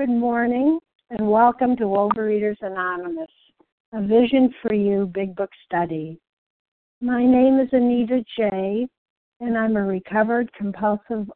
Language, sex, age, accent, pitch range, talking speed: English, female, 60-79, American, 200-245 Hz, 125 wpm